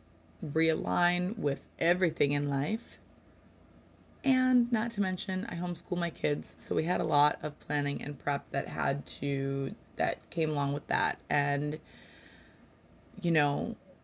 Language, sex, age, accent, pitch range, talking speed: English, female, 20-39, American, 140-170 Hz, 140 wpm